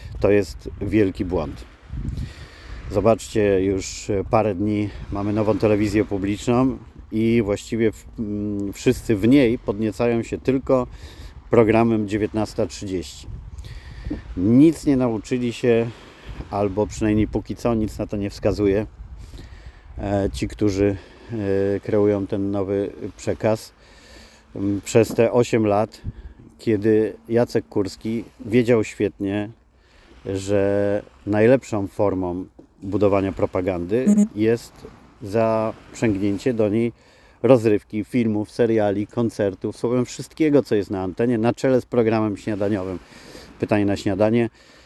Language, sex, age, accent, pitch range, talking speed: Polish, male, 40-59, native, 100-115 Hz, 105 wpm